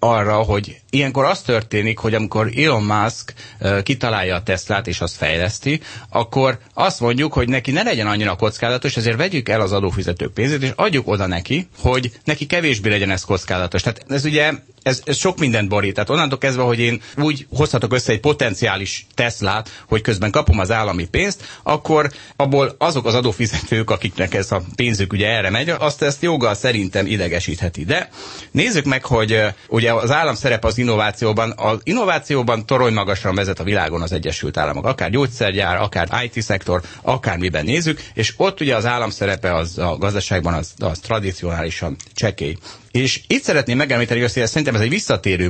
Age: 30-49